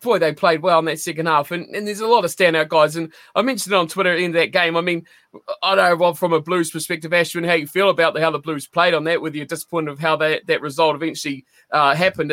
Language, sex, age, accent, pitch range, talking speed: English, male, 20-39, Australian, 160-195 Hz, 265 wpm